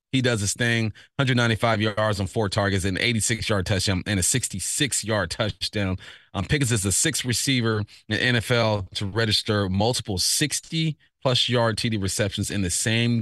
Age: 30-49